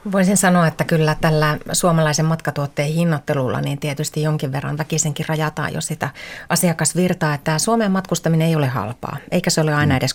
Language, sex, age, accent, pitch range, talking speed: Finnish, female, 30-49, native, 150-175 Hz, 165 wpm